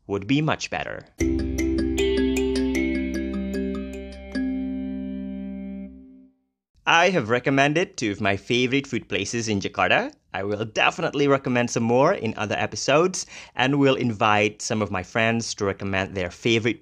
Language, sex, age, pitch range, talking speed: Indonesian, male, 30-49, 100-135 Hz, 125 wpm